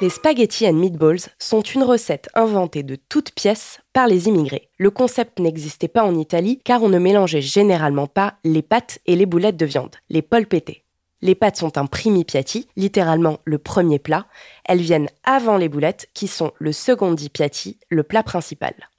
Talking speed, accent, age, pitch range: 185 wpm, French, 20-39, 160-215 Hz